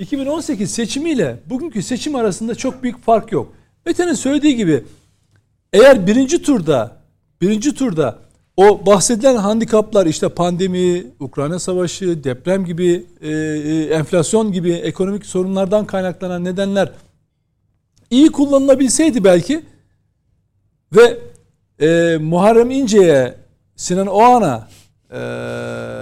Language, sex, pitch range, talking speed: Turkish, male, 165-265 Hz, 100 wpm